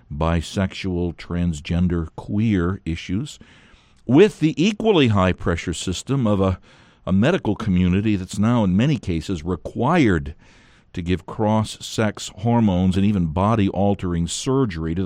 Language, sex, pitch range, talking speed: English, male, 90-120 Hz, 115 wpm